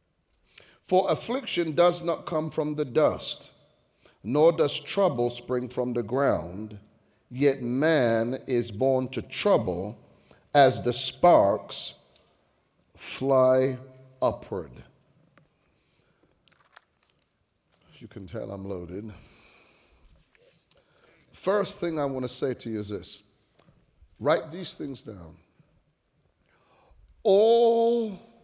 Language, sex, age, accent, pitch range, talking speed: English, male, 50-69, American, 115-165 Hz, 95 wpm